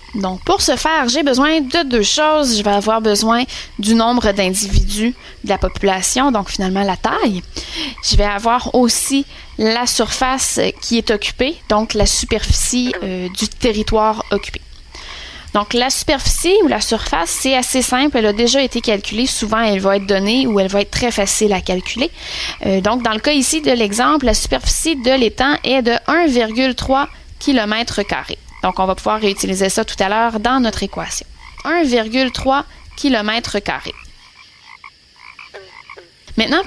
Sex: female